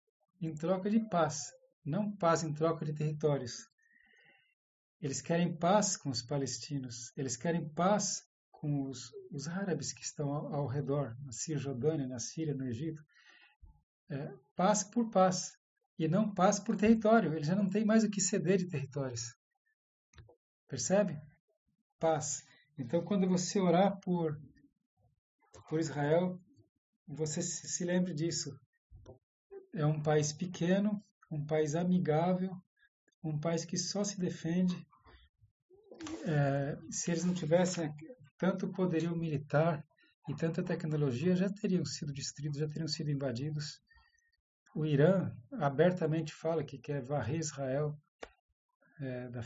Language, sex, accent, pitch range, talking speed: Portuguese, male, Brazilian, 145-190 Hz, 130 wpm